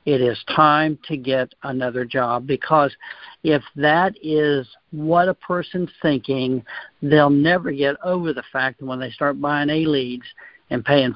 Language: English